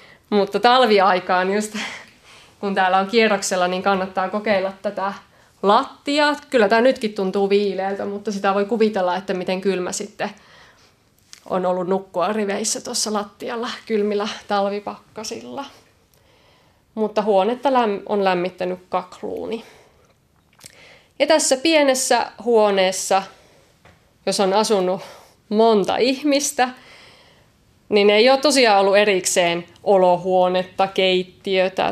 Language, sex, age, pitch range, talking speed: Finnish, female, 30-49, 185-215 Hz, 100 wpm